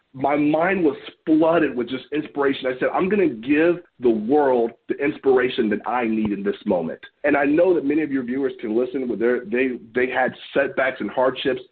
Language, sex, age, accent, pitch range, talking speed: English, male, 40-59, American, 125-175 Hz, 210 wpm